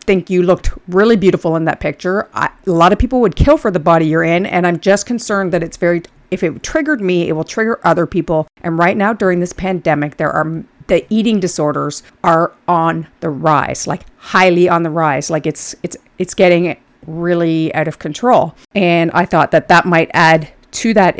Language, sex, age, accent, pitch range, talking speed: English, female, 40-59, American, 165-205 Hz, 205 wpm